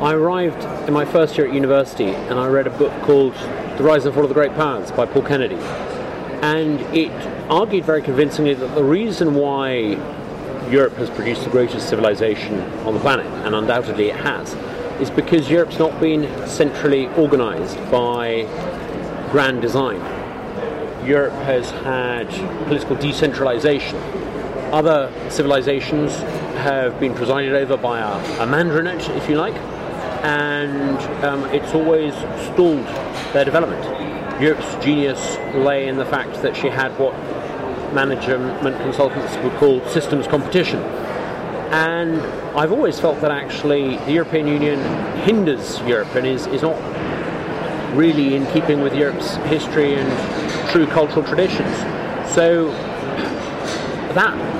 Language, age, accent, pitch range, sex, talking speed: English, 40-59, British, 135-155 Hz, male, 135 wpm